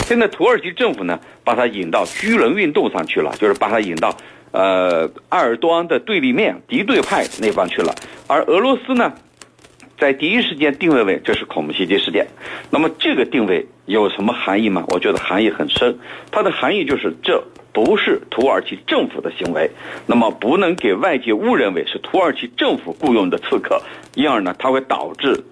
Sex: male